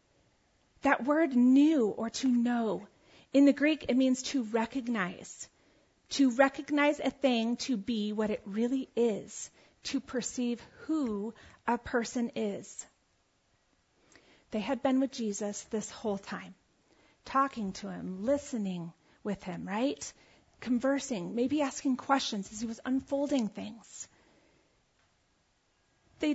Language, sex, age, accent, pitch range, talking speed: English, female, 40-59, American, 225-305 Hz, 125 wpm